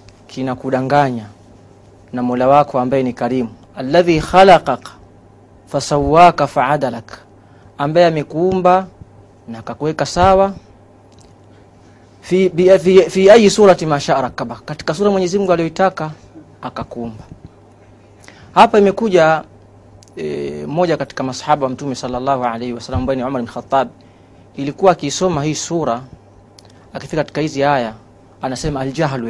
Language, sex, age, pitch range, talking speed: Swahili, male, 30-49, 110-180 Hz, 115 wpm